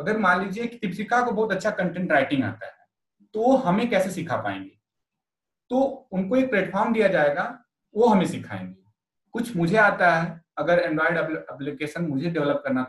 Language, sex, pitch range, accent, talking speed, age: Hindi, male, 150-205 Hz, native, 165 wpm, 30-49